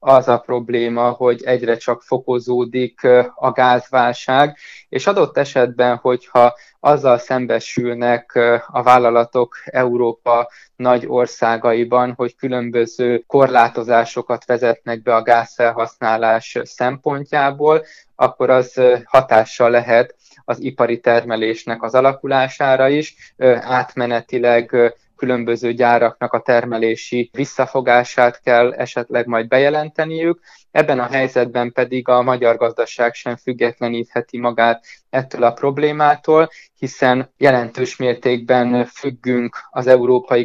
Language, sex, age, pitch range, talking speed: Hungarian, male, 20-39, 120-130 Hz, 100 wpm